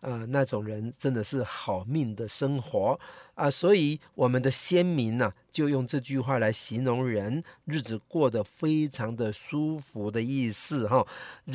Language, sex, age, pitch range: Chinese, male, 50-69, 115-145 Hz